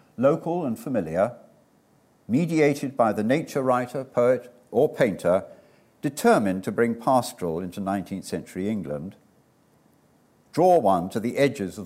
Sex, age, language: male, 60-79, English